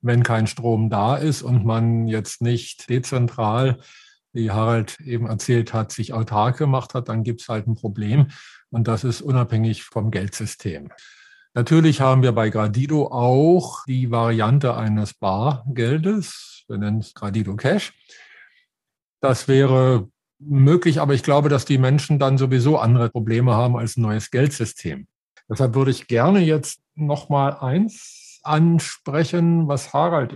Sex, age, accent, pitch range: male, 50-69, German, 115-145 Hz